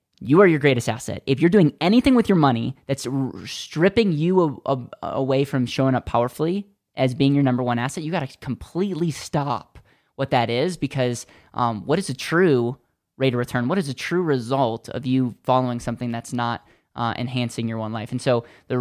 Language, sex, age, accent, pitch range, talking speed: English, male, 10-29, American, 115-140 Hz, 205 wpm